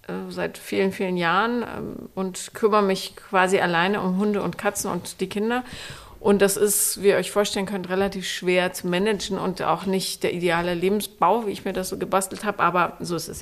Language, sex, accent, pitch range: German, female, German, 190-220 Hz